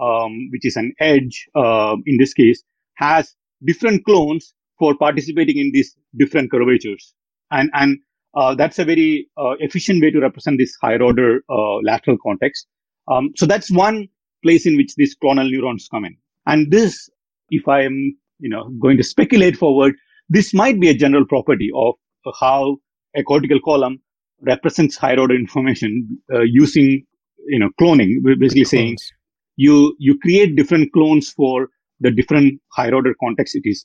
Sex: male